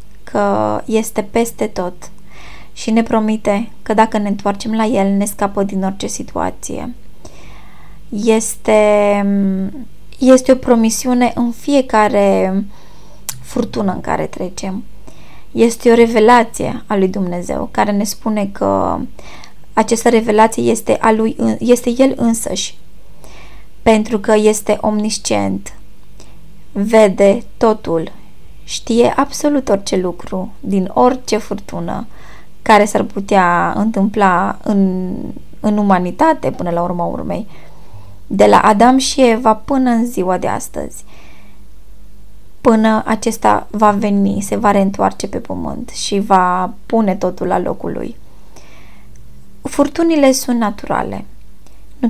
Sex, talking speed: female, 115 wpm